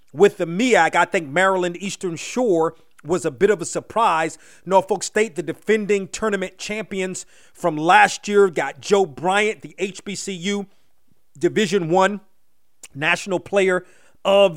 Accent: American